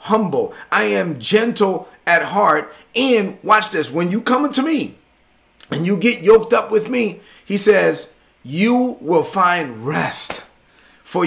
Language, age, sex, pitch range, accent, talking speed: English, 40-59, male, 170-215 Hz, American, 150 wpm